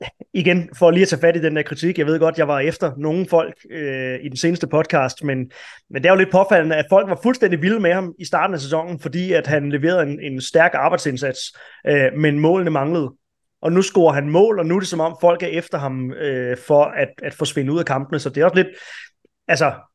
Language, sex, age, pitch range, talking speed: Danish, male, 20-39, 135-170 Hz, 245 wpm